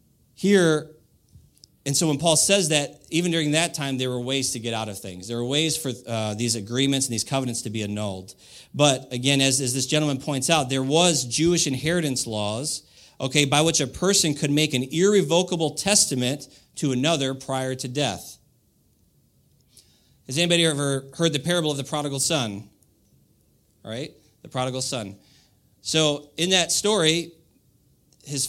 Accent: American